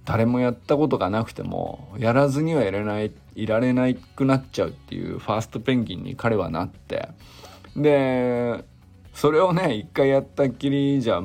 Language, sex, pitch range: Japanese, male, 100-145 Hz